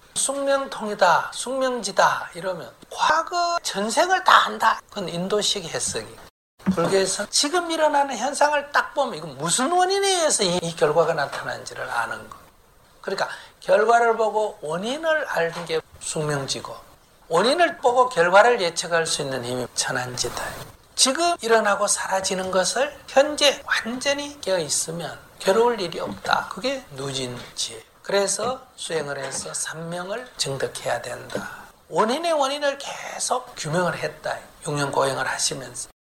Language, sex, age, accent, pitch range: Korean, male, 60-79, native, 185-280 Hz